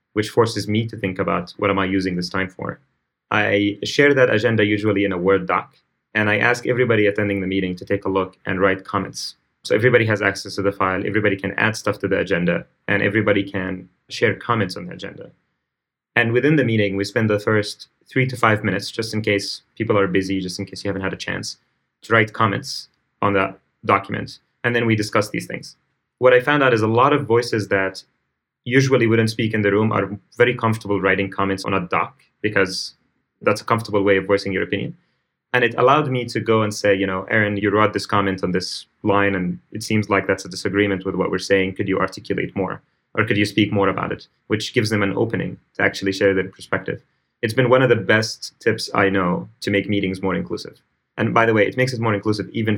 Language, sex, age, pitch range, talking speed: English, male, 30-49, 95-110 Hz, 230 wpm